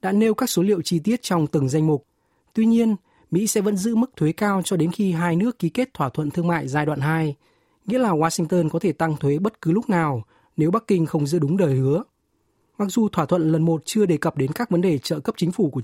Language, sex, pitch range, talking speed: Vietnamese, male, 155-210 Hz, 270 wpm